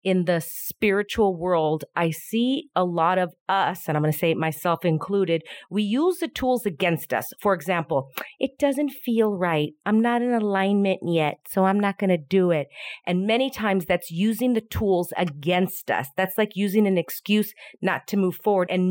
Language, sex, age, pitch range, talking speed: English, female, 40-59, 175-220 Hz, 195 wpm